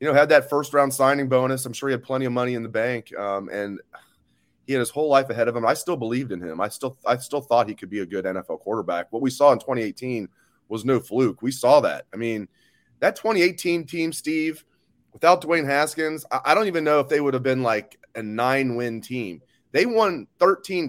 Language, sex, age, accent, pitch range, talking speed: English, male, 30-49, American, 120-150 Hz, 235 wpm